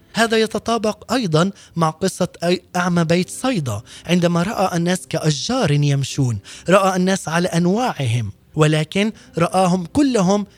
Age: 20-39